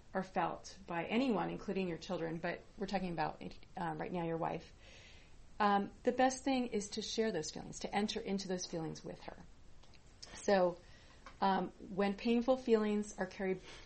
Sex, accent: female, American